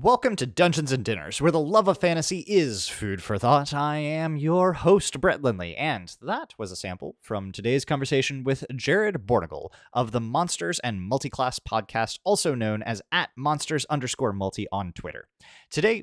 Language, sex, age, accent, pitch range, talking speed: English, male, 30-49, American, 115-185 Hz, 170 wpm